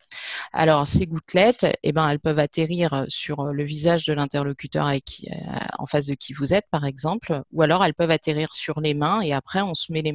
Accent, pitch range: French, 150-175 Hz